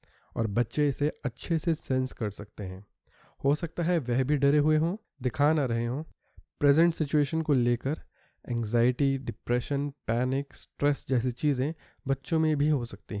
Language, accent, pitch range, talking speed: Hindi, native, 120-150 Hz, 170 wpm